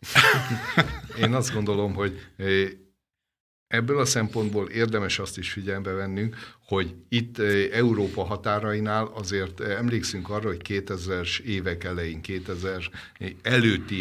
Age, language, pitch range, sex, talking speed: 60-79, Hungarian, 95-115 Hz, male, 105 wpm